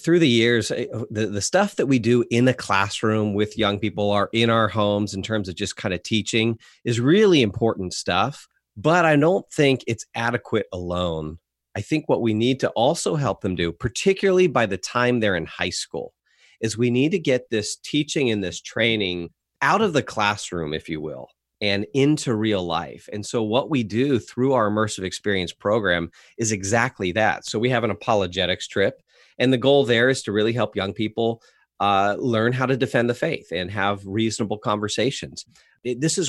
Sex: male